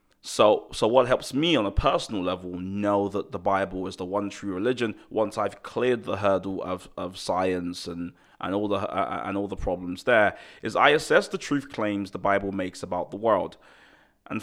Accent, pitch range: British, 95-115 Hz